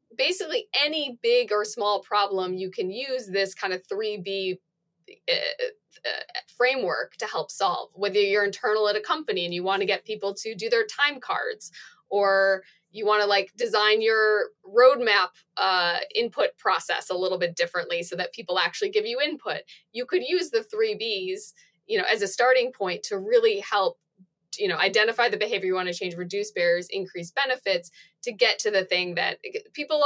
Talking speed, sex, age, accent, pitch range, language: 180 wpm, female, 20-39, American, 185-295 Hz, English